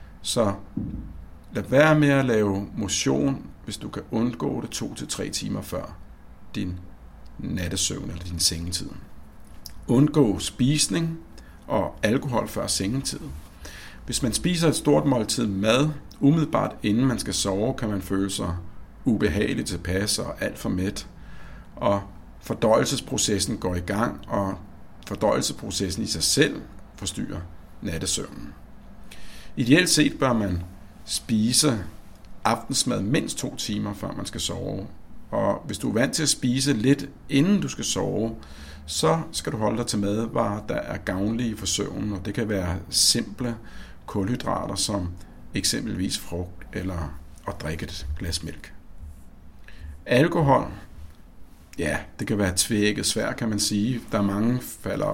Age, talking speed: 60-79, 140 wpm